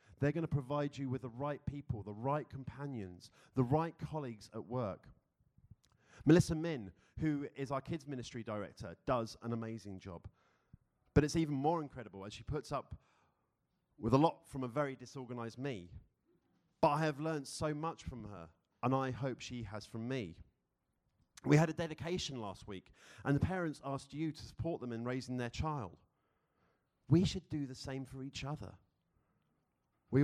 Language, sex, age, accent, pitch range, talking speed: English, male, 40-59, British, 105-145 Hz, 175 wpm